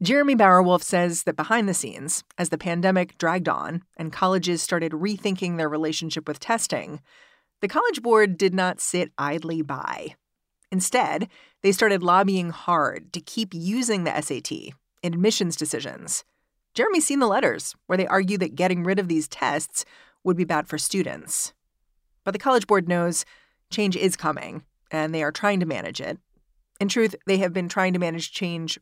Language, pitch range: English, 170-210 Hz